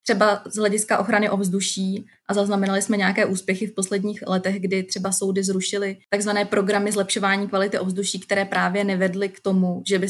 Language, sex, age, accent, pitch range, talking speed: Czech, female, 20-39, native, 190-205 Hz, 170 wpm